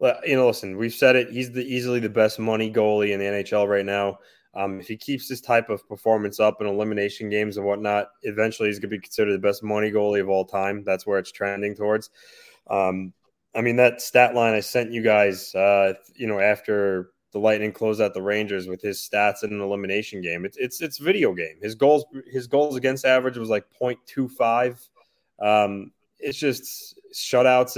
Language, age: English, 20-39